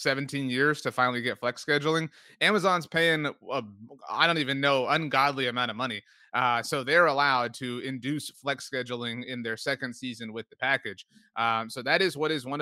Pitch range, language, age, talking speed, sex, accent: 115-145 Hz, English, 30-49, 185 wpm, male, American